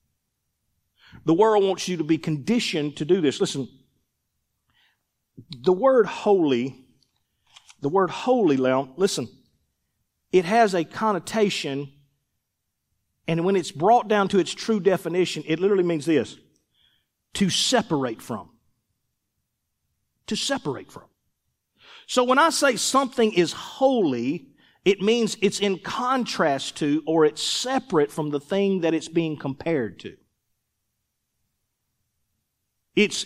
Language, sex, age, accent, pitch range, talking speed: English, male, 40-59, American, 155-210 Hz, 120 wpm